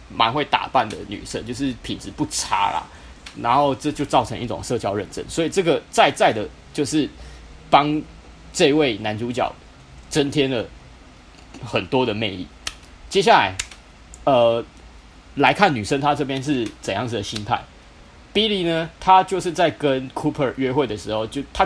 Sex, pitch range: male, 90-150 Hz